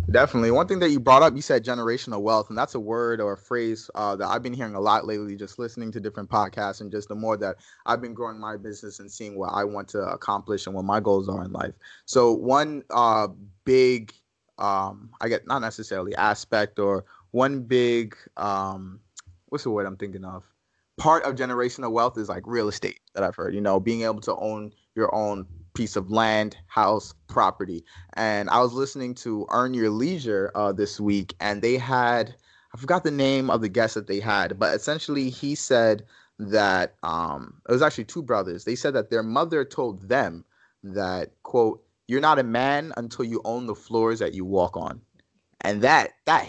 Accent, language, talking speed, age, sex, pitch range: American, English, 205 wpm, 20-39, male, 100-120 Hz